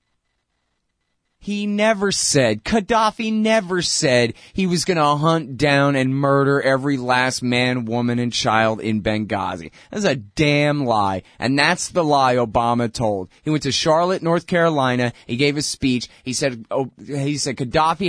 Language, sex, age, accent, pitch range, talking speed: English, male, 30-49, American, 115-150 Hz, 160 wpm